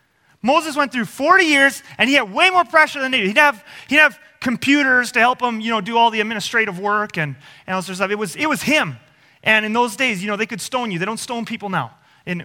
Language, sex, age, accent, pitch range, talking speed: English, male, 30-49, American, 160-210 Hz, 270 wpm